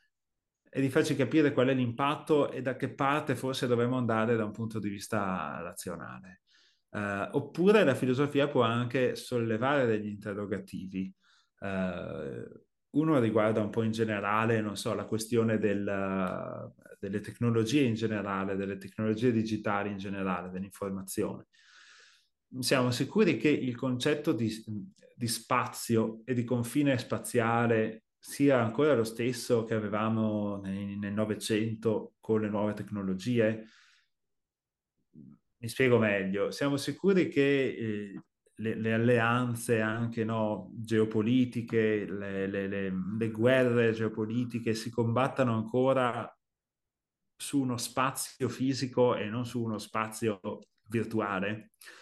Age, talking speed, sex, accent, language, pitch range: 30-49, 120 wpm, male, native, Italian, 105-125 Hz